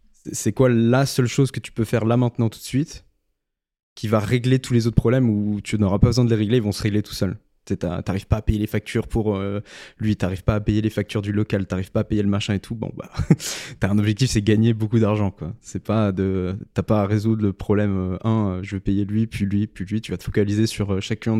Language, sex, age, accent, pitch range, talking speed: French, male, 20-39, French, 100-115 Hz, 265 wpm